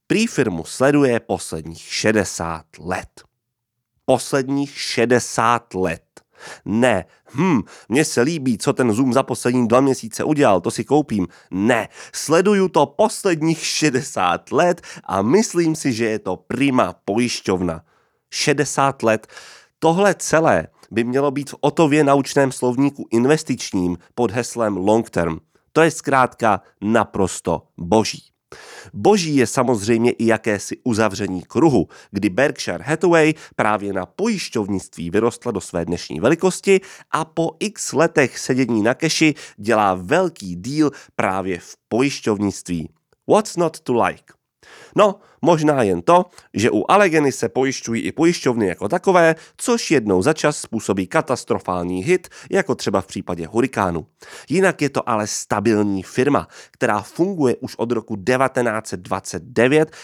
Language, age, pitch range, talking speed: Czech, 30-49, 100-155 Hz, 130 wpm